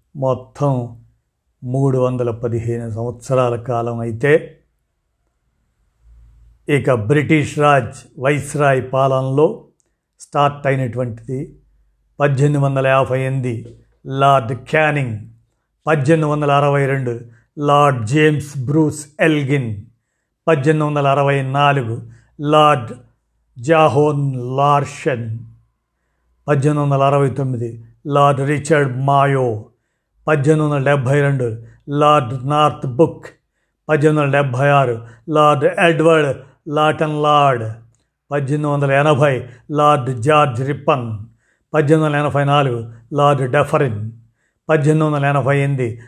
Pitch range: 120-150 Hz